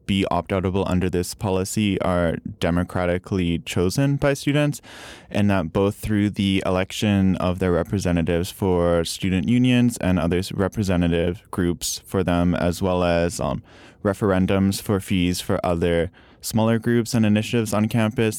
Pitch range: 90-105 Hz